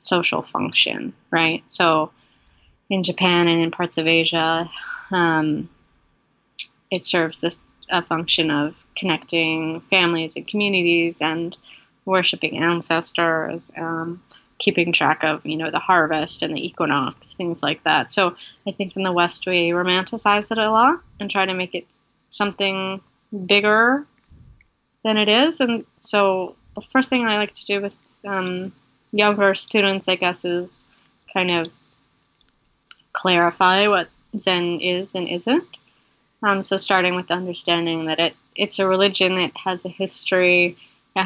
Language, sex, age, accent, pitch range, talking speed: English, female, 20-39, American, 170-205 Hz, 145 wpm